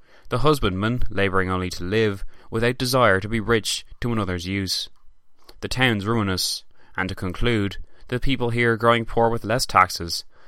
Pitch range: 90-120 Hz